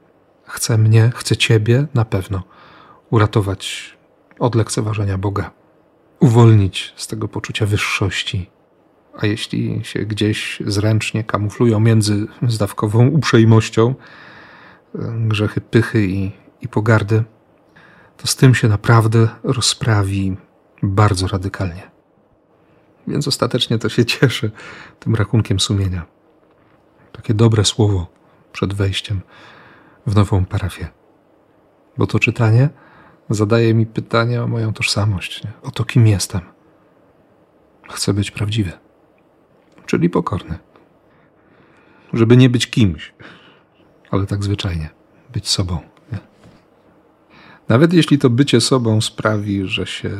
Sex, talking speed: male, 110 wpm